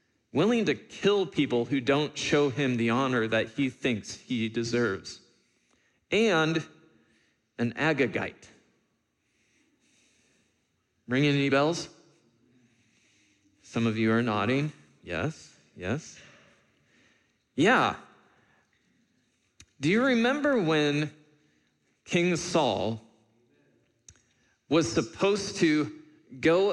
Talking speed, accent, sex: 90 wpm, American, male